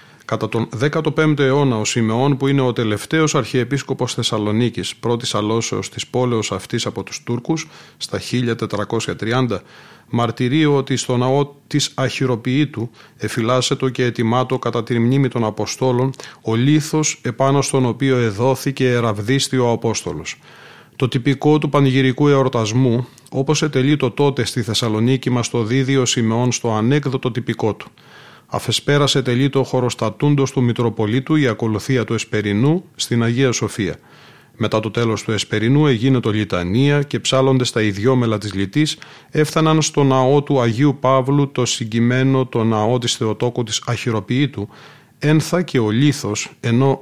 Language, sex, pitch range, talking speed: Greek, male, 115-140 Hz, 140 wpm